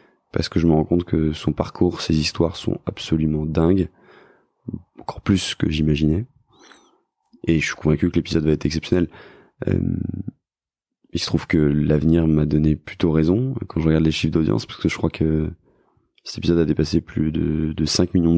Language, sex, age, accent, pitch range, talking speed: French, male, 20-39, French, 80-90 Hz, 185 wpm